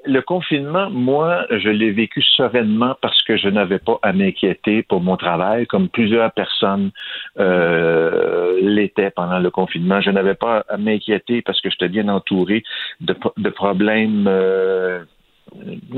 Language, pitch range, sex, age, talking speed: French, 95-130 Hz, male, 60-79, 145 wpm